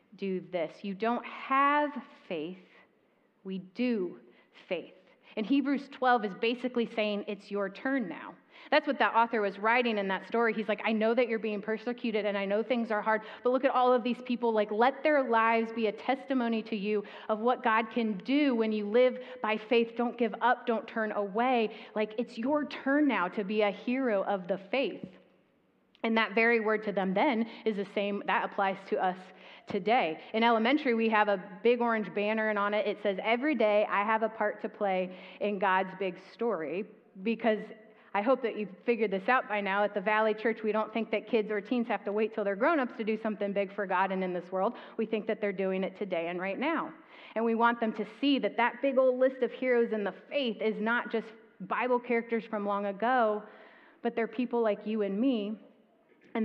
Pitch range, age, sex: 205-240 Hz, 30-49, female